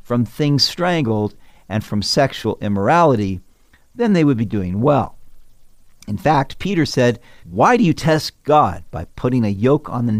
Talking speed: 165 wpm